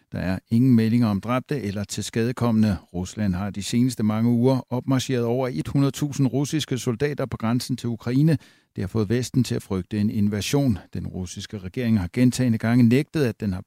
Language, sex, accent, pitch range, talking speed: Danish, male, native, 105-130 Hz, 190 wpm